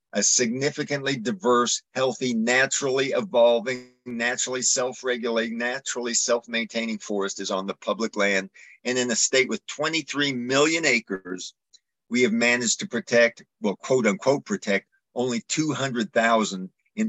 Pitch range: 115-140 Hz